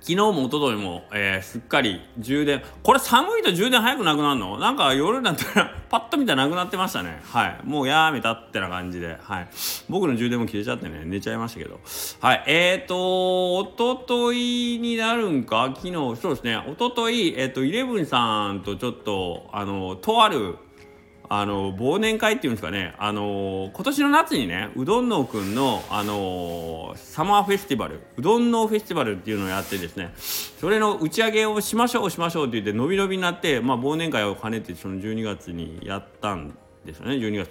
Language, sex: Japanese, male